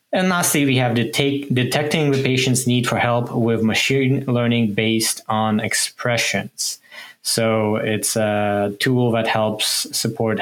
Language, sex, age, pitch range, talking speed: English, male, 20-39, 110-130 Hz, 150 wpm